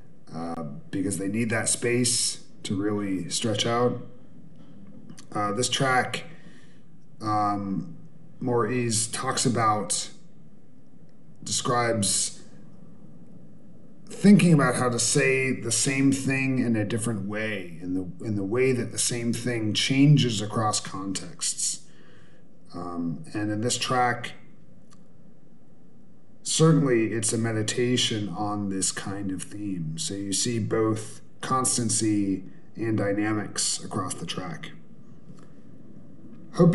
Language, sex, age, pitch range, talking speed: English, male, 40-59, 100-125 Hz, 110 wpm